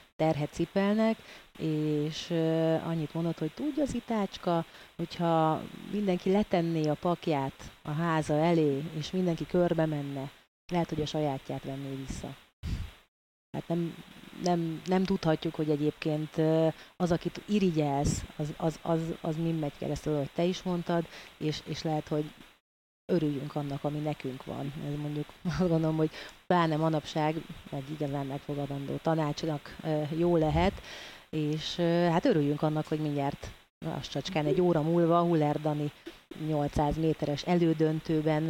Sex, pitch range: female, 150-165 Hz